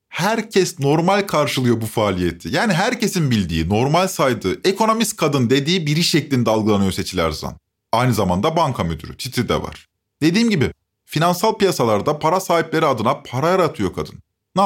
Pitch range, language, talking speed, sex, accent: 110-170 Hz, Turkish, 145 wpm, male, native